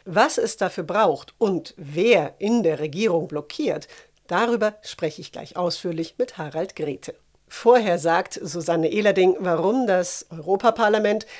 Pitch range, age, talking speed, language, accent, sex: 165-215 Hz, 50-69, 130 wpm, German, German, female